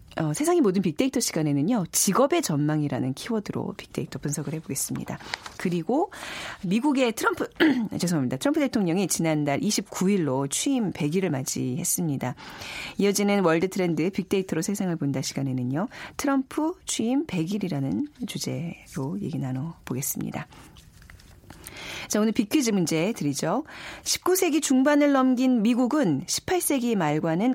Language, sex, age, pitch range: Korean, female, 40-59, 150-240 Hz